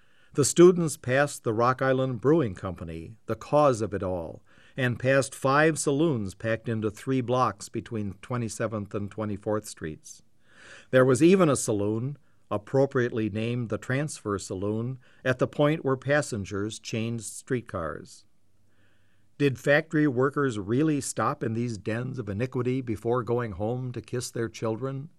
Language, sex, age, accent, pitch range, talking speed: English, male, 60-79, American, 105-135 Hz, 145 wpm